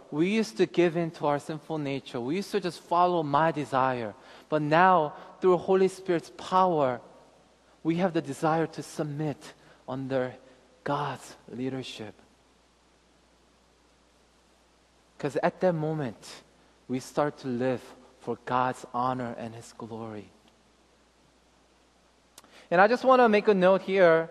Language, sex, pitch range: Korean, male, 145-205 Hz